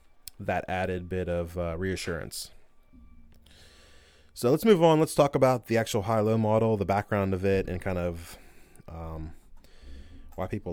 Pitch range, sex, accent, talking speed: 90-115 Hz, male, American, 150 wpm